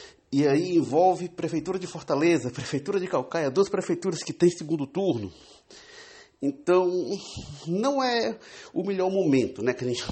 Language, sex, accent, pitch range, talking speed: Portuguese, male, Brazilian, 110-155 Hz, 150 wpm